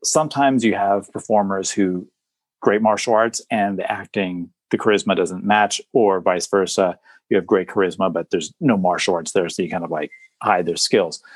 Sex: male